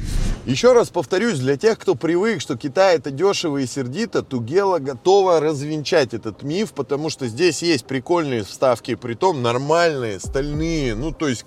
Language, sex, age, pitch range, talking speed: Russian, male, 20-39, 135-185 Hz, 160 wpm